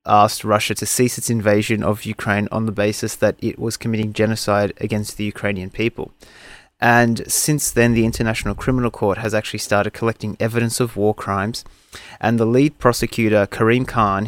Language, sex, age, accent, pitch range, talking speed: English, male, 30-49, Australian, 110-130 Hz, 170 wpm